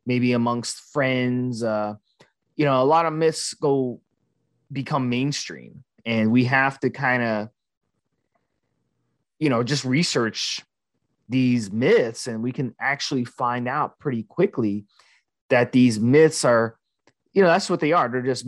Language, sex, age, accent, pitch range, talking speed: English, male, 20-39, American, 120-160 Hz, 145 wpm